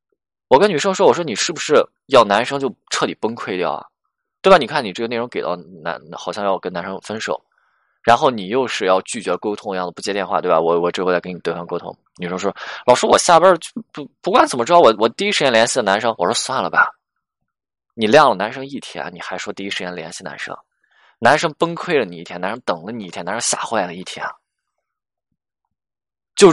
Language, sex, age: Chinese, male, 20-39